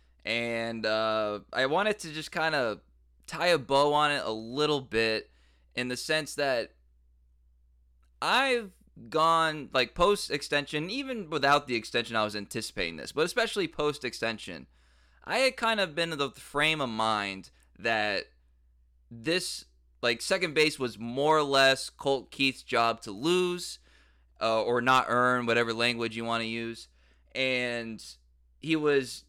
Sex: male